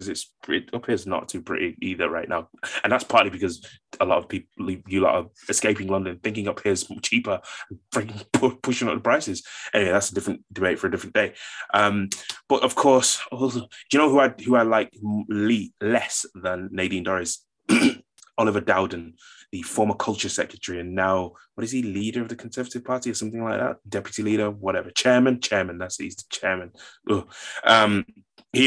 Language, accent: English, British